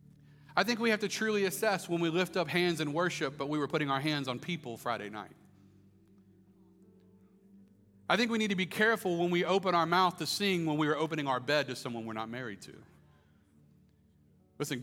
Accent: American